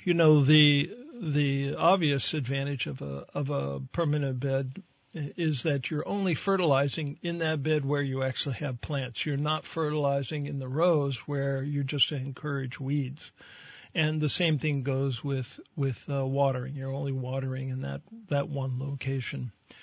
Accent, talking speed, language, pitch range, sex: American, 165 wpm, English, 135-155 Hz, male